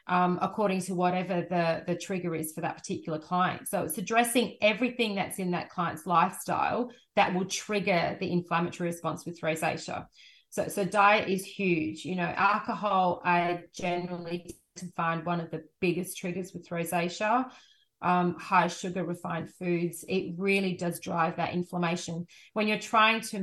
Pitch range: 170-195 Hz